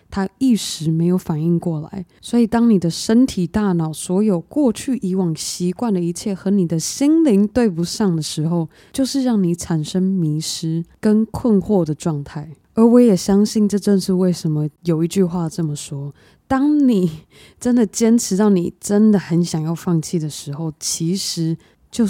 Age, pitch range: 20-39, 165-205 Hz